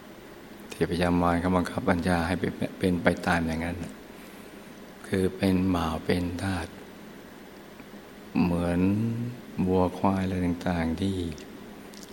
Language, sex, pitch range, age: Thai, male, 85-95 Hz, 60-79